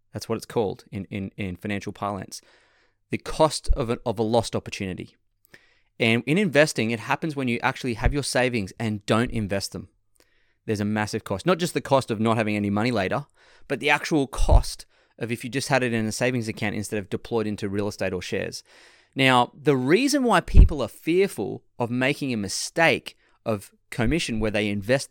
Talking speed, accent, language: 200 wpm, Australian, English